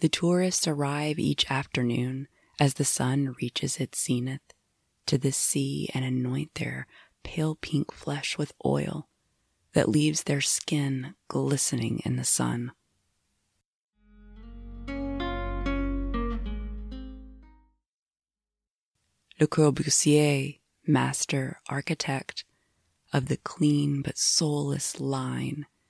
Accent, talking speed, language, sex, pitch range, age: American, 95 wpm, English, female, 130-170 Hz, 20-39